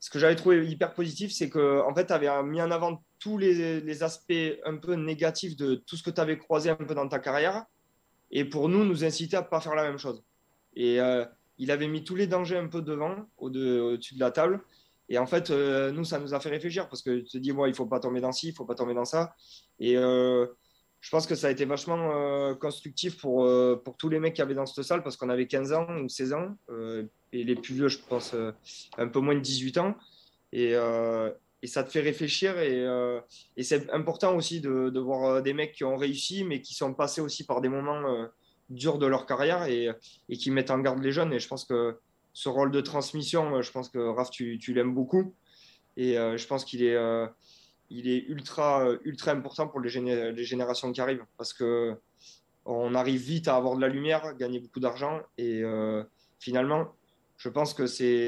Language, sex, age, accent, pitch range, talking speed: French, male, 20-39, French, 125-155 Hz, 235 wpm